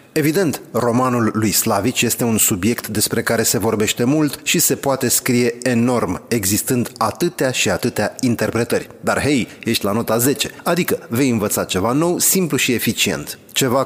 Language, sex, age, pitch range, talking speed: Romanian, male, 30-49, 105-140 Hz, 160 wpm